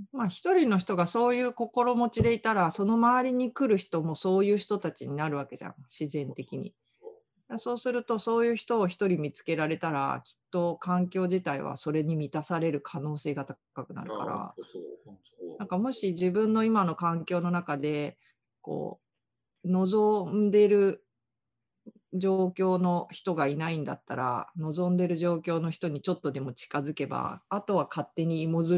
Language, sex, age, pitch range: Japanese, female, 40-59, 145-195 Hz